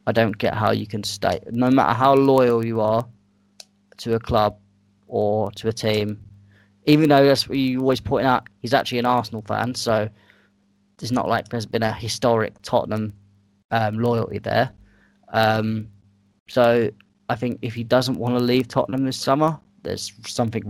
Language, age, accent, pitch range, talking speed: English, 20-39, British, 105-120 Hz, 175 wpm